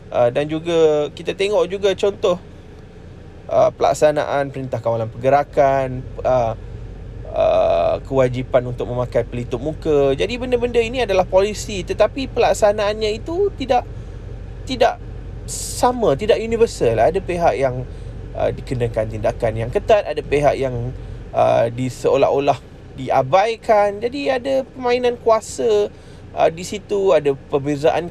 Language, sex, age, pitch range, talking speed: Malay, male, 20-39, 120-195 Hz, 120 wpm